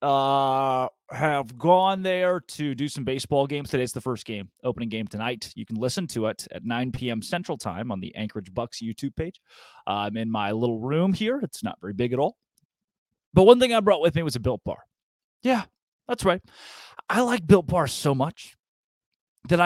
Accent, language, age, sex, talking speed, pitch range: American, English, 30-49, male, 200 wpm, 120-175 Hz